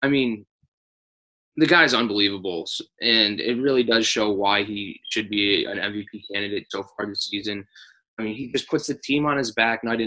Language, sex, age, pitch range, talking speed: English, male, 20-39, 110-130 Hz, 195 wpm